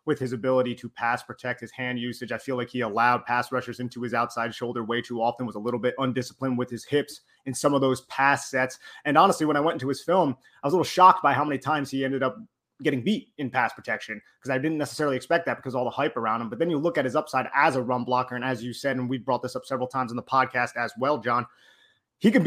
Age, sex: 30-49, male